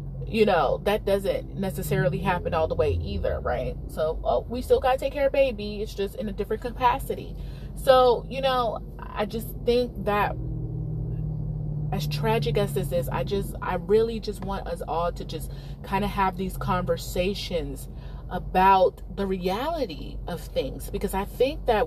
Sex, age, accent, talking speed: female, 30-49, American, 170 wpm